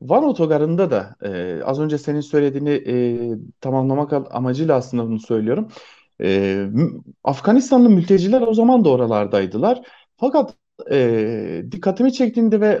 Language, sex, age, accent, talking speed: German, male, 40-59, Turkish, 130 wpm